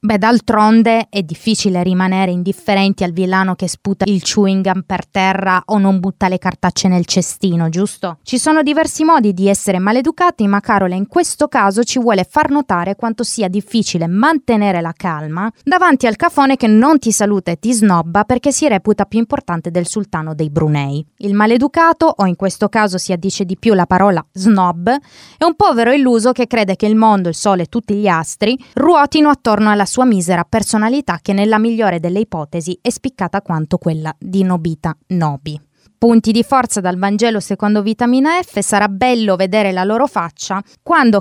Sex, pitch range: female, 185-240 Hz